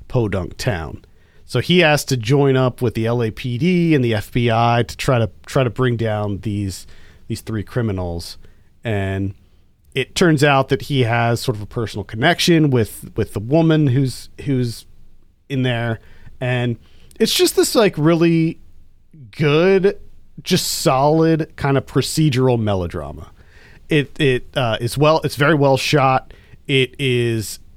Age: 40-59